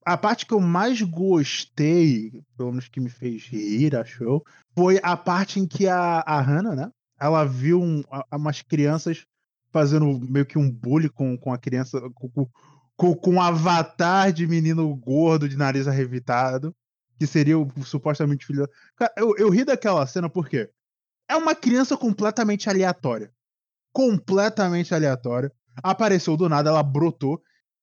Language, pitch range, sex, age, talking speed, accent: Portuguese, 140-195 Hz, male, 20-39, 155 wpm, Brazilian